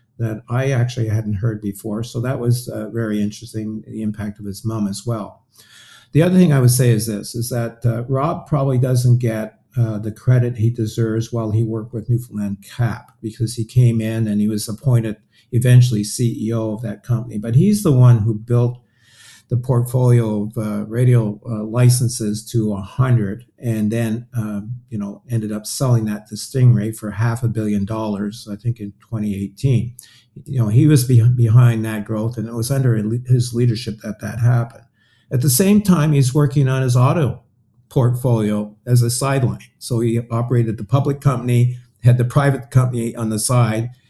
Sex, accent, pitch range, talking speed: male, American, 110-125 Hz, 185 wpm